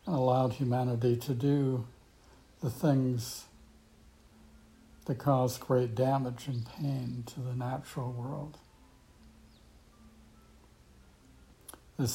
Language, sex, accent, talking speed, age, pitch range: English, male, American, 90 wpm, 60-79, 110-130 Hz